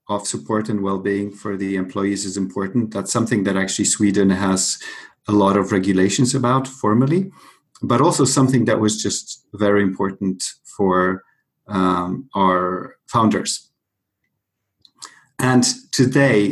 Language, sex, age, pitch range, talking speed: English, male, 40-59, 95-120 Hz, 125 wpm